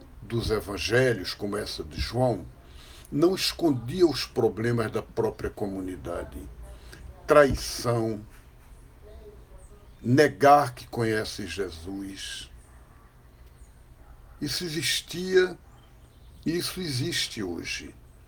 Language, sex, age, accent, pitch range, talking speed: Portuguese, male, 60-79, Brazilian, 95-135 Hz, 80 wpm